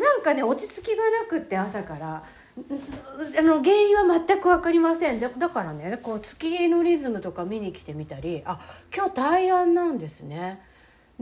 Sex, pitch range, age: female, 190-310 Hz, 40-59